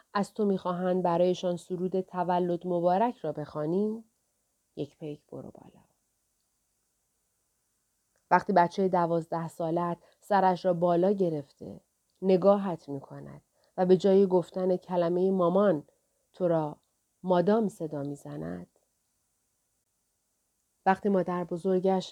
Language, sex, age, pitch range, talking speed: Persian, female, 30-49, 165-195 Hz, 100 wpm